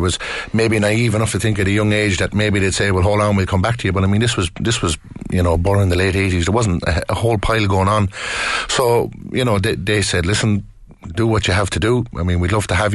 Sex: male